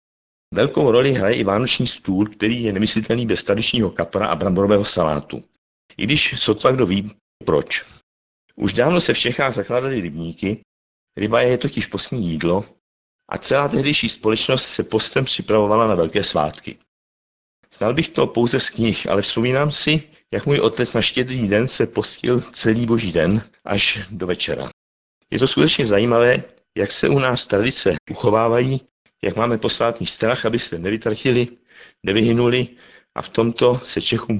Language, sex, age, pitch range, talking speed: Czech, male, 60-79, 95-115 Hz, 155 wpm